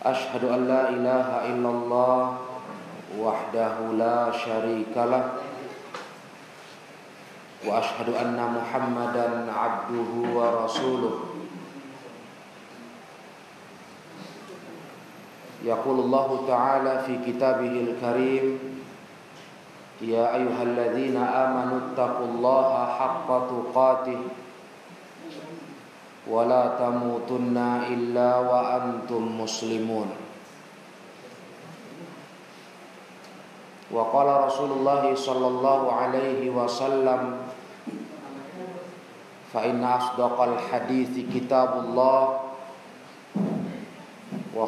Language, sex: Indonesian, male